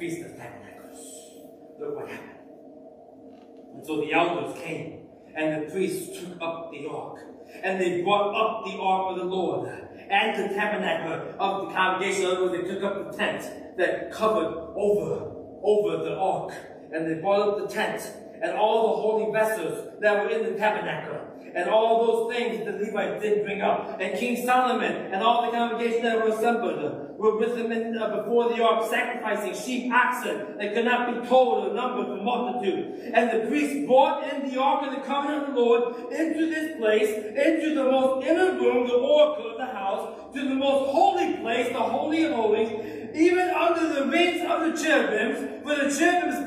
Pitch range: 215-290 Hz